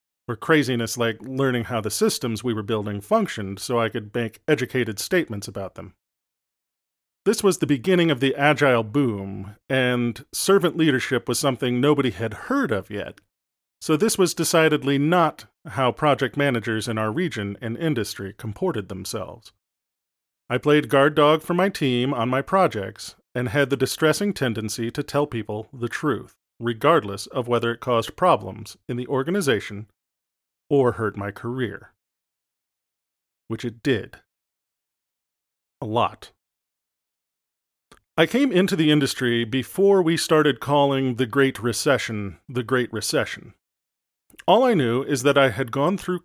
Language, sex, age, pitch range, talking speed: English, male, 40-59, 110-145 Hz, 150 wpm